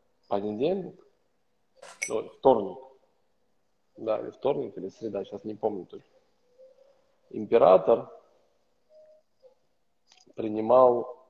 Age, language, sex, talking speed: 20-39, Russian, male, 75 wpm